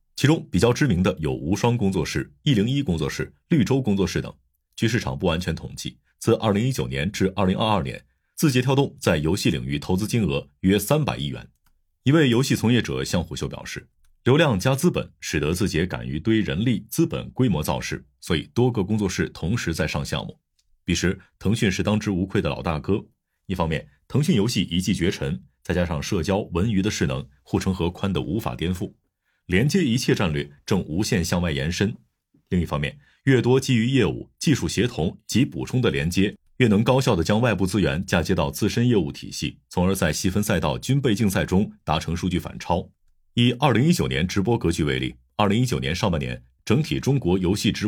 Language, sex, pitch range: Chinese, male, 85-120 Hz